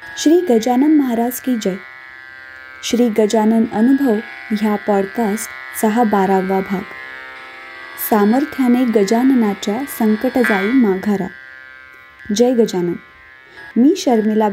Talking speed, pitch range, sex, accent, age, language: 85 wpm, 210-275 Hz, female, native, 20-39, Marathi